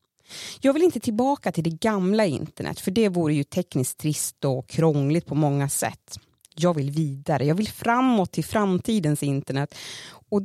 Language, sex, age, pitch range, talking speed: Swedish, female, 30-49, 145-190 Hz, 165 wpm